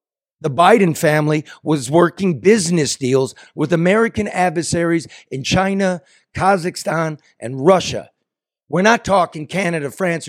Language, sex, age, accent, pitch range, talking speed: English, male, 50-69, American, 145-185 Hz, 115 wpm